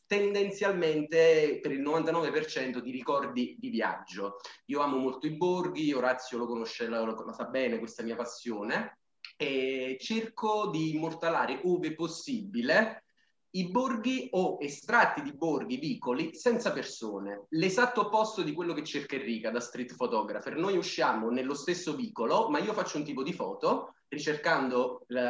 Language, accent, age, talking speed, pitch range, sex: Italian, native, 30-49, 145 wpm, 125-180 Hz, male